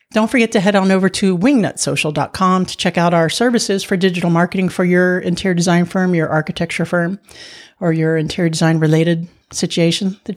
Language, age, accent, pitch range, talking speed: English, 40-59, American, 160-190 Hz, 175 wpm